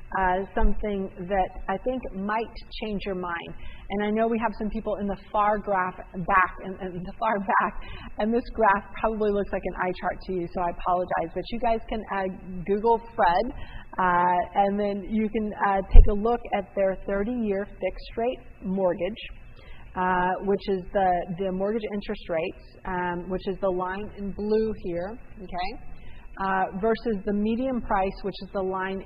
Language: English